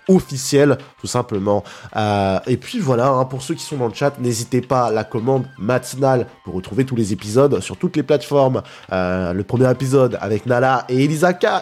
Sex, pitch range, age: male, 115-180 Hz, 20-39